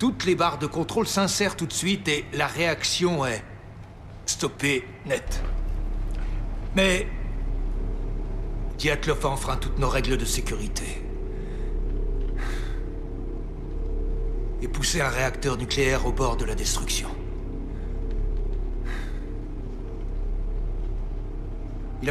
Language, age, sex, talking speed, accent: French, 60-79, male, 95 wpm, French